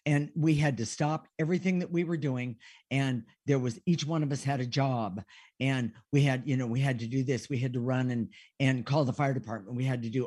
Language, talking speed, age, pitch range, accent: English, 255 wpm, 50-69, 120-145 Hz, American